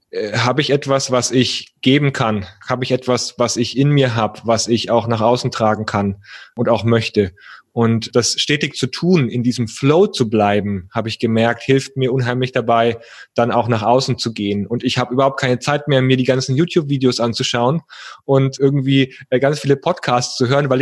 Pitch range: 115-140 Hz